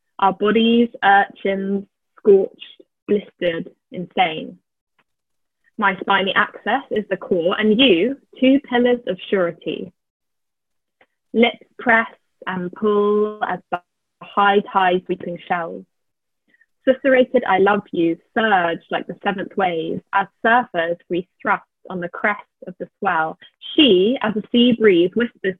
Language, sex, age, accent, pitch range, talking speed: English, female, 20-39, British, 185-230 Hz, 120 wpm